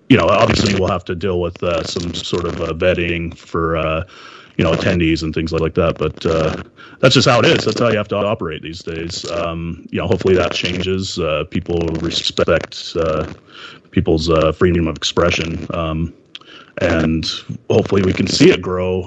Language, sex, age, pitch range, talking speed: English, male, 30-49, 85-100 Hz, 190 wpm